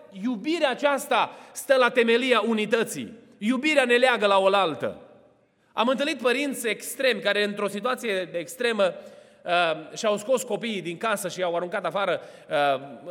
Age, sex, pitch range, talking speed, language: 30-49, male, 205-275 Hz, 140 wpm, Romanian